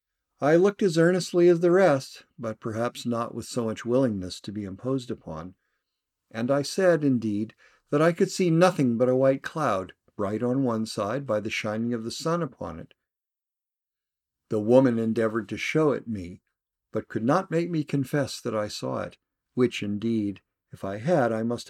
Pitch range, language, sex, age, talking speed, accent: 105-140 Hz, English, male, 50-69, 185 wpm, American